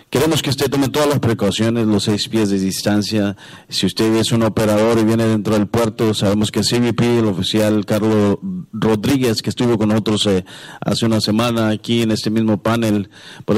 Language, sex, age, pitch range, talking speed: English, male, 40-59, 105-120 Hz, 190 wpm